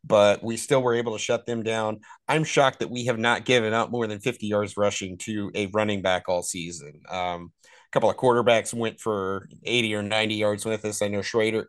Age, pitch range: 30-49, 105-125 Hz